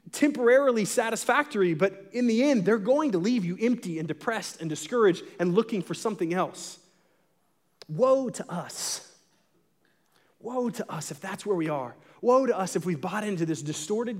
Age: 30-49